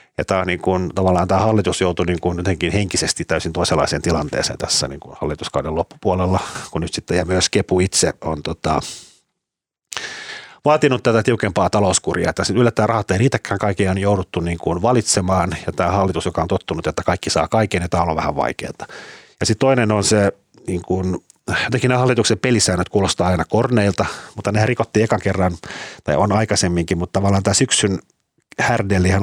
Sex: male